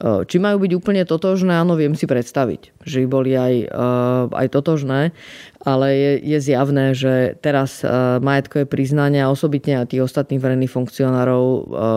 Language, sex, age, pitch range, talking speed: Slovak, female, 20-39, 130-145 Hz, 150 wpm